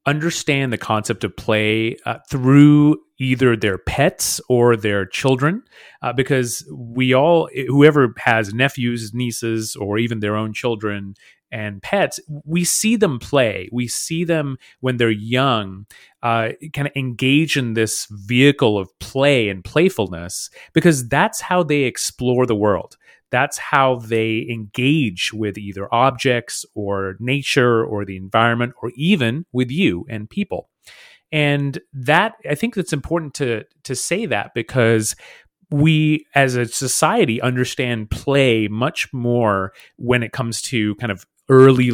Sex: male